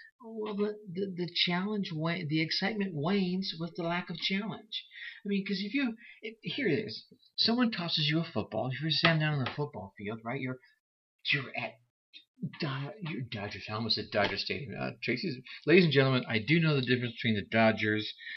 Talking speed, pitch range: 195 wpm, 125-180 Hz